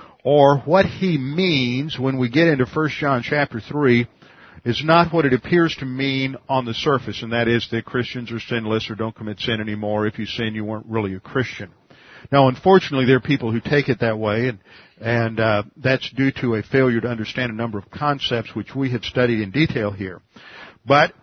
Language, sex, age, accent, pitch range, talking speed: English, male, 50-69, American, 115-140 Hz, 210 wpm